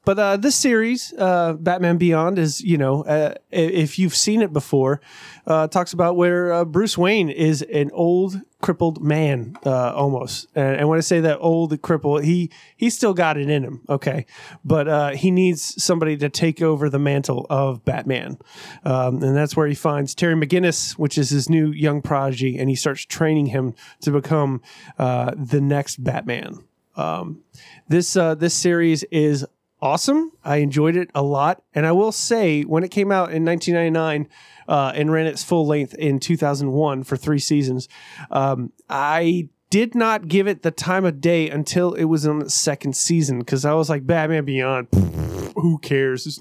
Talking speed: 180 wpm